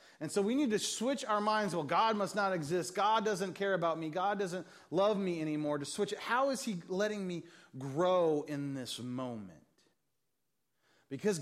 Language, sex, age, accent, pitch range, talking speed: English, male, 30-49, American, 130-190 Hz, 190 wpm